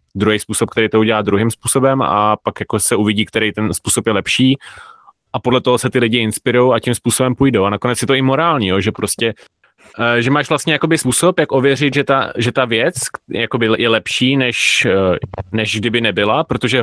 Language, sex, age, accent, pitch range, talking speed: Czech, male, 20-39, native, 110-125 Hz, 195 wpm